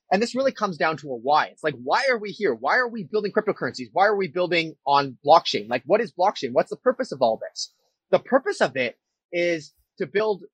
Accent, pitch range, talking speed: American, 140-190 Hz, 240 wpm